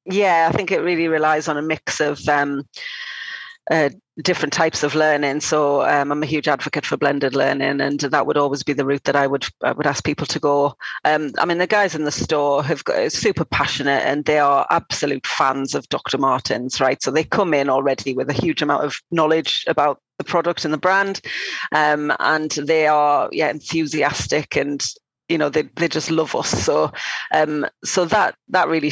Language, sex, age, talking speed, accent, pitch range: English, female, 30-49, 205 wpm, British, 145-170 Hz